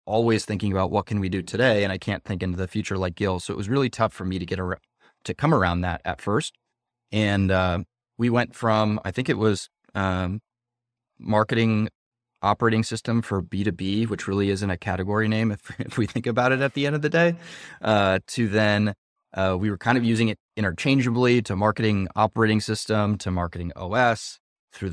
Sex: male